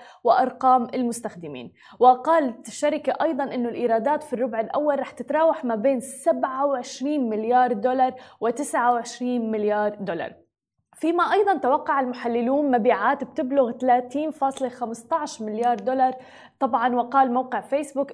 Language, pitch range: Arabic, 230-275 Hz